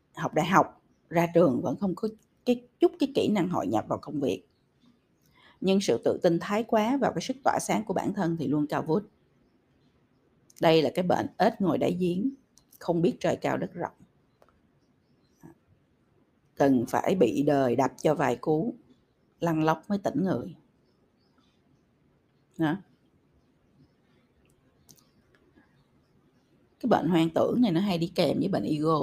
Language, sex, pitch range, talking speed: Vietnamese, female, 160-230 Hz, 155 wpm